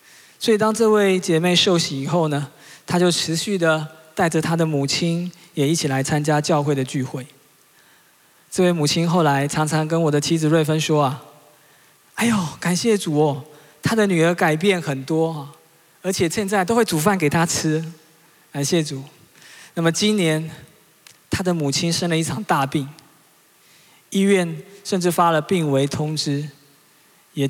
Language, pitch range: Chinese, 150-180 Hz